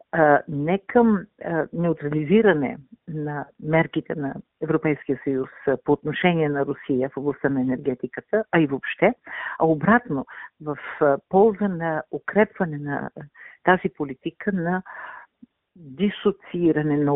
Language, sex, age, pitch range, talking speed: Bulgarian, female, 50-69, 150-195 Hz, 110 wpm